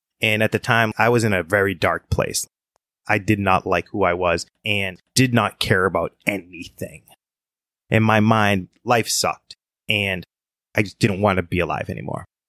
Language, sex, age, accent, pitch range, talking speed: English, male, 20-39, American, 100-120 Hz, 185 wpm